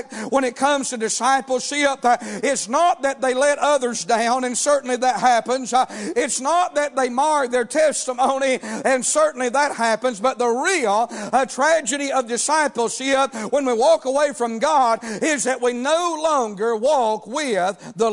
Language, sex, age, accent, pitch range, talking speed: English, male, 50-69, American, 245-285 Hz, 155 wpm